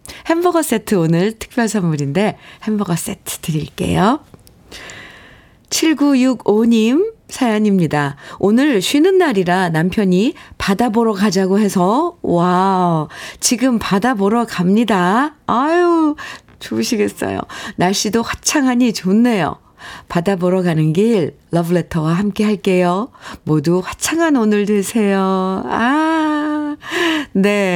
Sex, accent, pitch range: female, native, 175-235 Hz